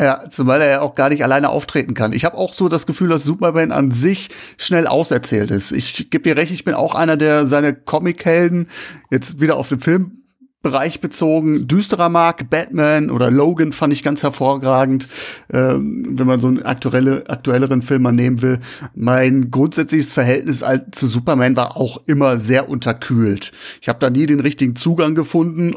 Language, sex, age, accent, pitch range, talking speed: English, male, 40-59, German, 135-165 Hz, 180 wpm